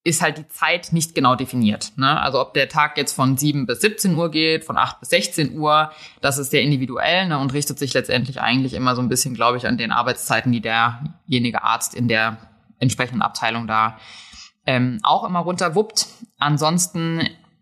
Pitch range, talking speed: 130-165 Hz, 195 wpm